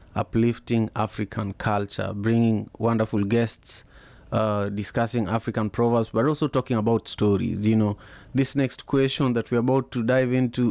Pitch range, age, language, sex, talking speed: 105-120 Hz, 30-49, English, male, 145 wpm